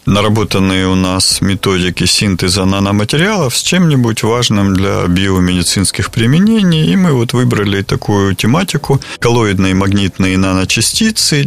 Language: Russian